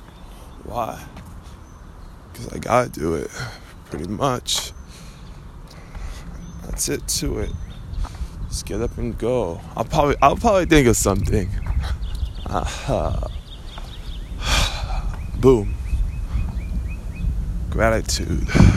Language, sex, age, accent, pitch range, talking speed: English, male, 20-39, American, 80-110 Hz, 85 wpm